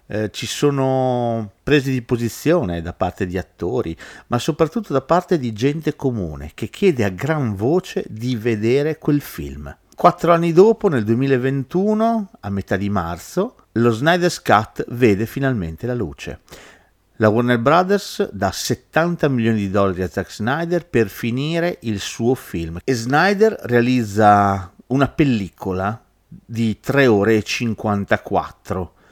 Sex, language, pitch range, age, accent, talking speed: male, Italian, 95-140 Hz, 50-69, native, 140 wpm